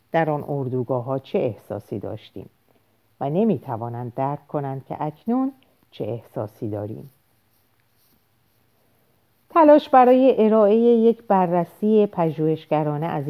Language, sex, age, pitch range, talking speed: Persian, female, 50-69, 125-190 Hz, 105 wpm